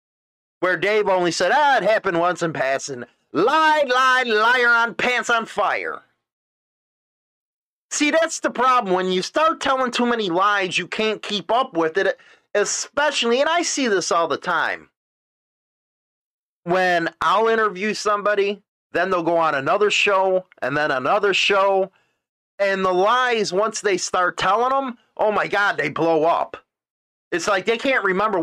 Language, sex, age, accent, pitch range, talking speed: English, male, 30-49, American, 175-240 Hz, 160 wpm